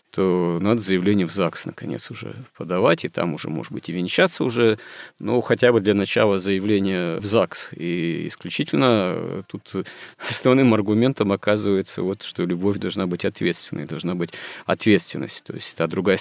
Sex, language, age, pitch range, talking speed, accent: male, Russian, 40-59, 95-115 Hz, 165 wpm, native